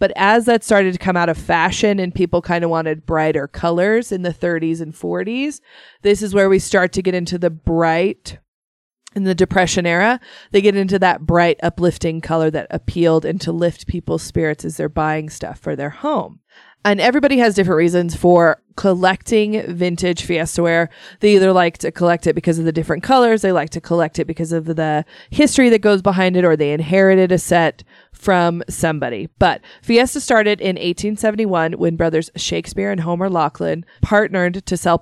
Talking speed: 190 wpm